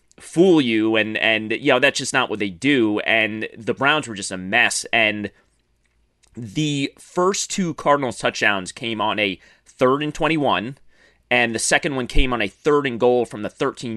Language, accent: English, American